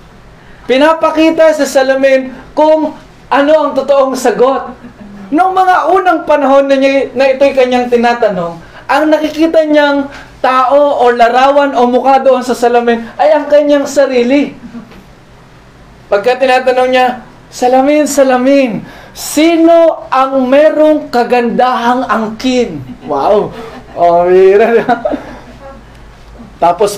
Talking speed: 105 wpm